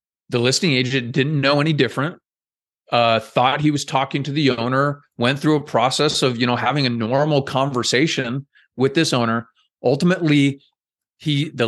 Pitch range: 120-150 Hz